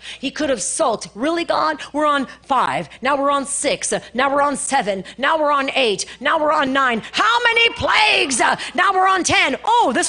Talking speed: 200 wpm